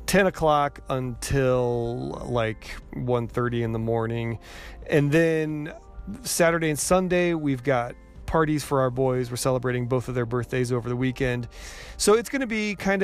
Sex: male